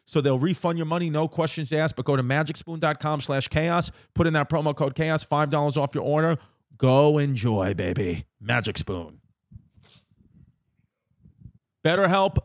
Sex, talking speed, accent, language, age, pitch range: male, 145 wpm, American, English, 40-59, 125-145 Hz